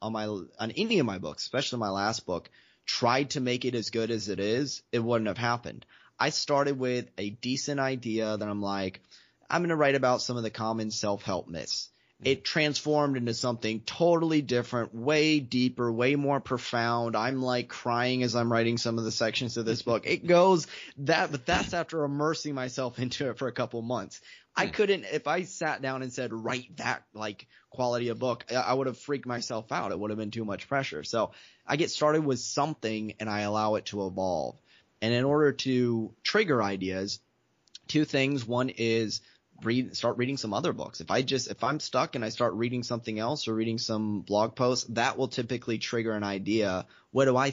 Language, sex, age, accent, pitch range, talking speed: English, male, 20-39, American, 110-135 Hz, 205 wpm